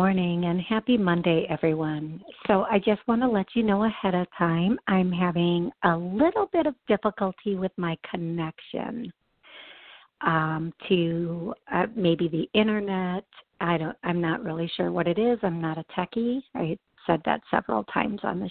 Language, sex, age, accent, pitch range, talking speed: English, female, 50-69, American, 175-220 Hz, 165 wpm